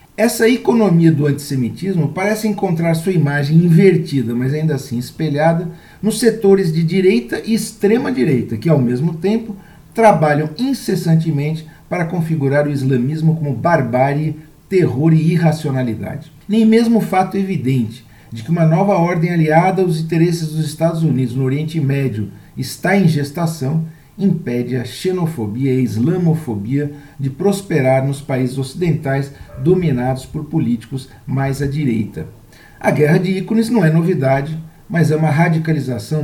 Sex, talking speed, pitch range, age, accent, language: male, 135 wpm, 135-175 Hz, 50-69, Brazilian, Portuguese